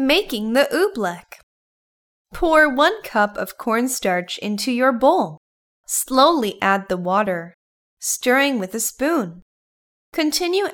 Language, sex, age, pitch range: Thai, female, 10-29, 195-280 Hz